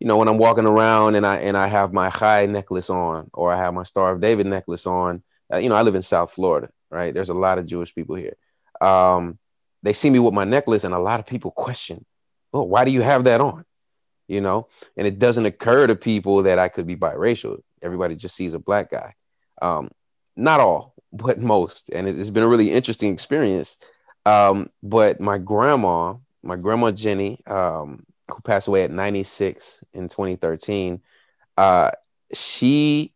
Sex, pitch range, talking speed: male, 90-110 Hz, 190 wpm